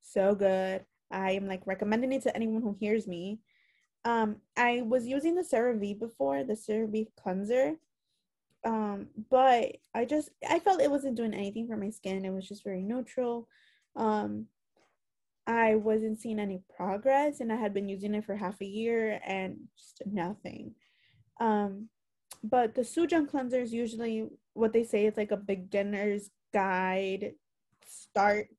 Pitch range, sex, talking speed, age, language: 195-235 Hz, female, 155 wpm, 20-39, English